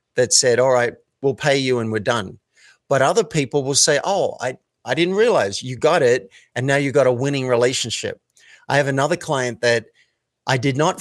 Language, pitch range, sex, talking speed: English, 120-145 Hz, male, 205 wpm